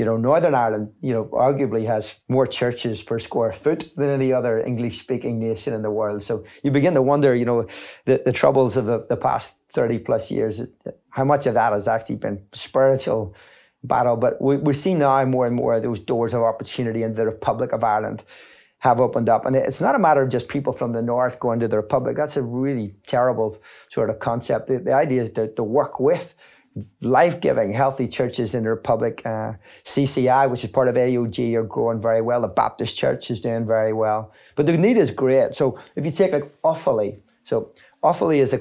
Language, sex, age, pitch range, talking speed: English, male, 30-49, 115-140 Hz, 210 wpm